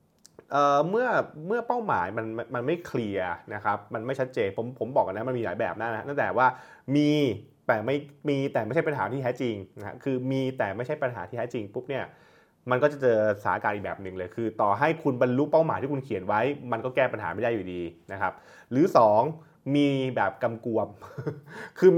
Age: 20-39